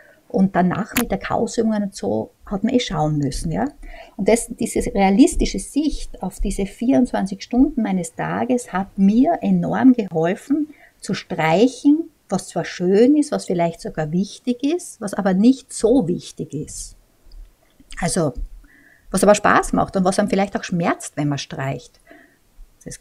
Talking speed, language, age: 155 wpm, German, 60-79